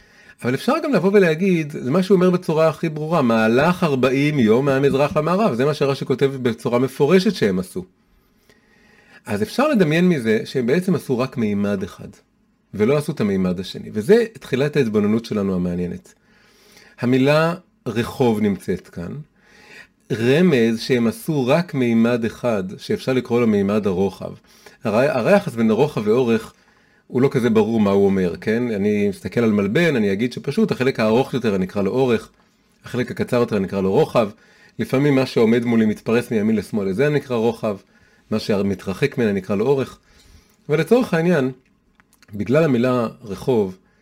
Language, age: Hebrew, 40-59